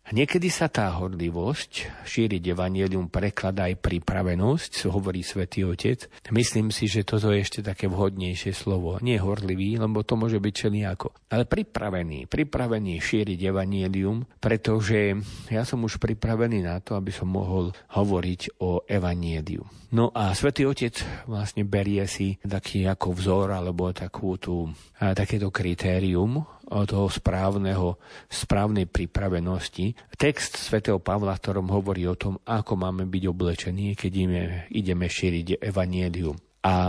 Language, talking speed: Slovak, 130 wpm